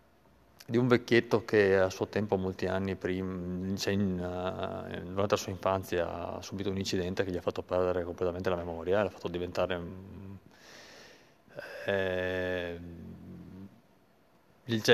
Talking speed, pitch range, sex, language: 125 wpm, 90-115 Hz, male, Italian